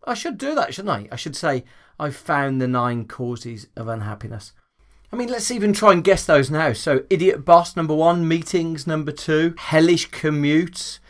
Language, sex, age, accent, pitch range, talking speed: English, male, 40-59, British, 115-155 Hz, 190 wpm